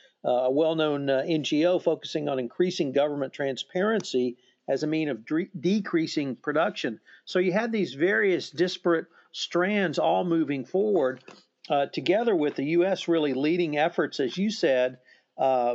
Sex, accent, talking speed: male, American, 145 wpm